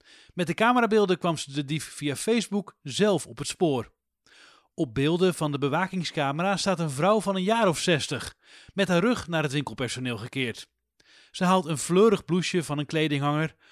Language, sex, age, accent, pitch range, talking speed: English, male, 40-59, Dutch, 140-195 Hz, 180 wpm